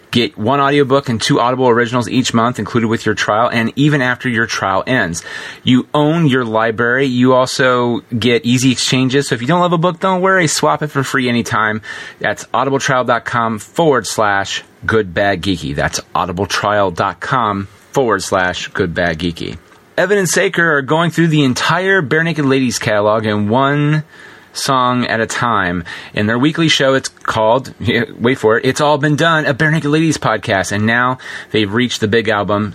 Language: English